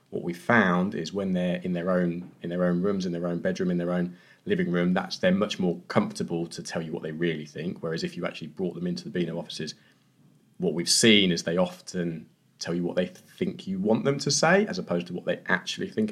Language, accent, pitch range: English, British, 85-120 Hz